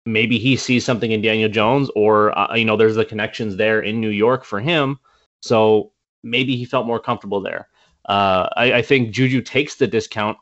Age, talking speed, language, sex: 20-39, 200 wpm, English, male